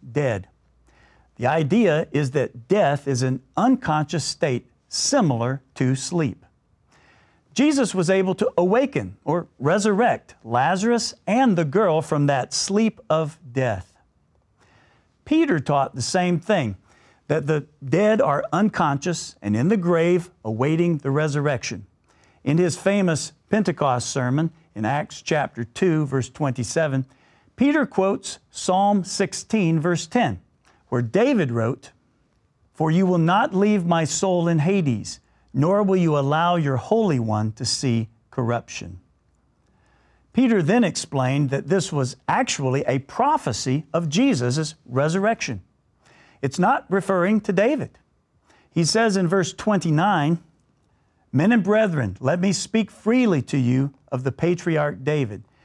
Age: 50-69